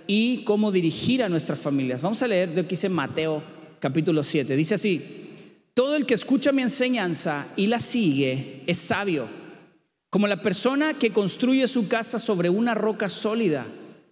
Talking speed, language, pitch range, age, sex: 165 wpm, Spanish, 170-245 Hz, 40-59, male